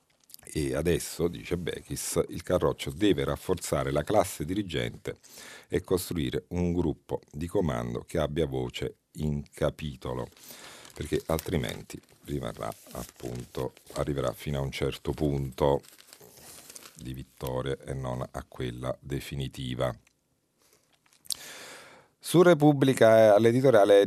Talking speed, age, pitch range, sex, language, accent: 110 wpm, 50-69, 70-100 Hz, male, Italian, native